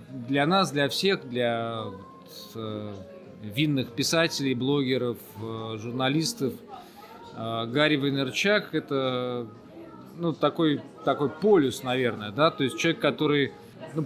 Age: 20-39